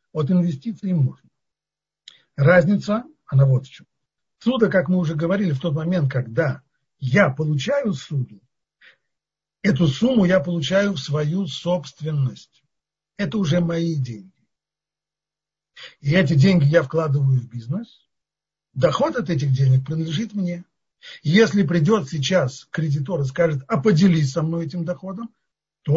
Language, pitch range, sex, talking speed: Russian, 135-185 Hz, male, 130 wpm